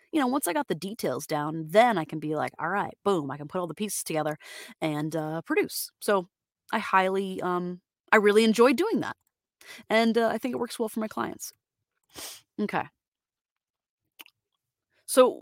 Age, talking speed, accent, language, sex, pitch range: 30-49, 185 wpm, American, English, female, 160-220 Hz